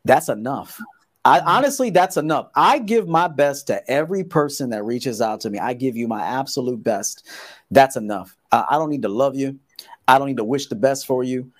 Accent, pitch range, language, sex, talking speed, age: American, 130-190 Hz, English, male, 215 wpm, 40-59